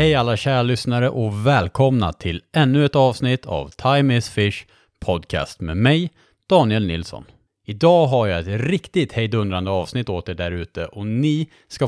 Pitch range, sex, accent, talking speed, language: 95-135 Hz, male, Norwegian, 165 wpm, Swedish